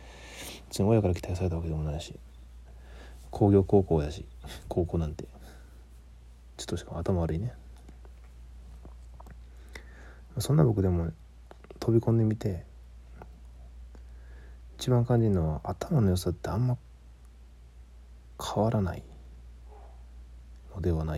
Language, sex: Japanese, male